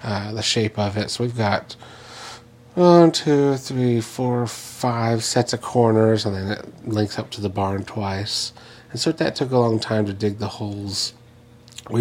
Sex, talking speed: male, 185 wpm